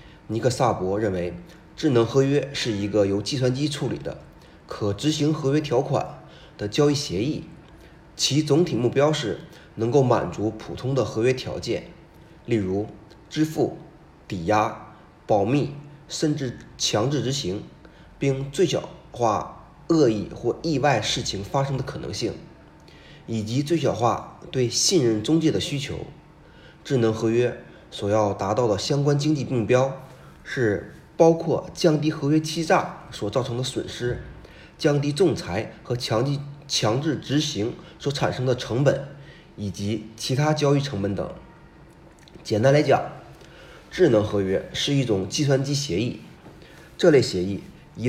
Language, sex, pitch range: Chinese, male, 115-150 Hz